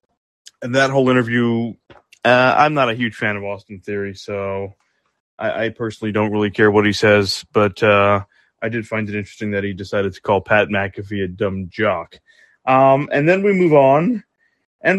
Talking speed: 190 wpm